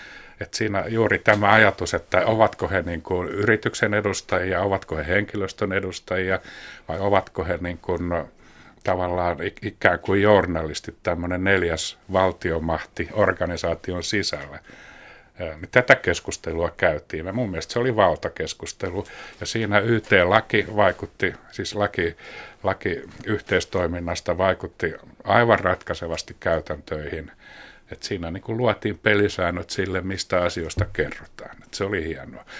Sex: male